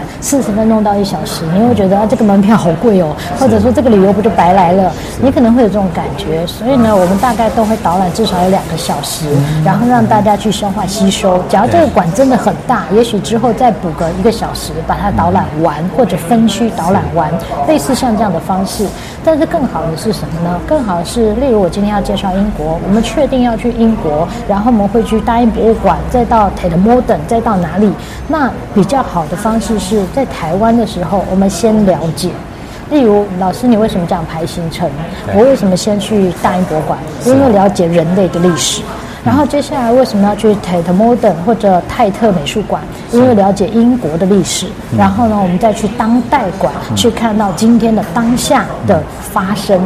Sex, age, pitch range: female, 20-39, 180-230 Hz